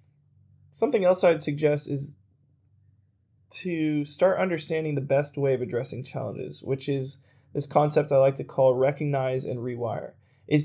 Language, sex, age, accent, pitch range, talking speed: English, male, 20-39, American, 135-155 Hz, 145 wpm